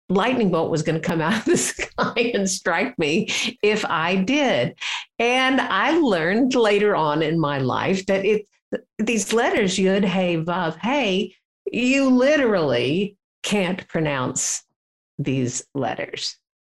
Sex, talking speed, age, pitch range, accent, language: female, 135 wpm, 60-79, 150-210 Hz, American, English